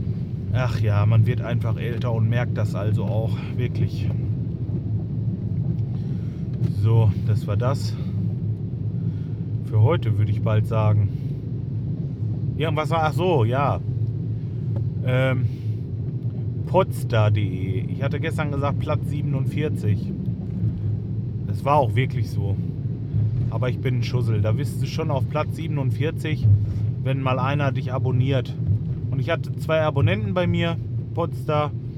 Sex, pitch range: male, 115-130 Hz